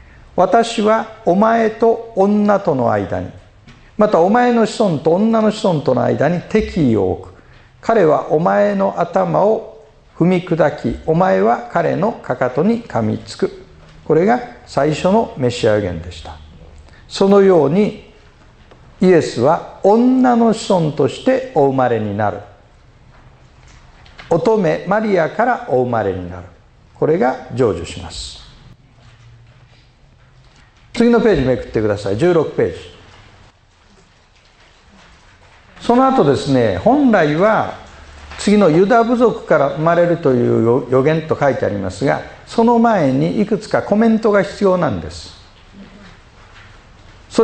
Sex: male